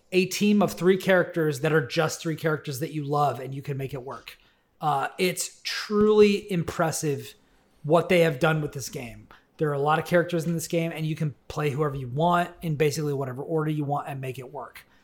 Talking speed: 225 wpm